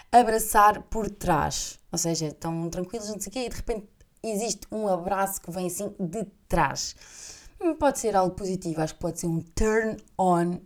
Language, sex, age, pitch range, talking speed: Portuguese, female, 20-39, 165-190 Hz, 185 wpm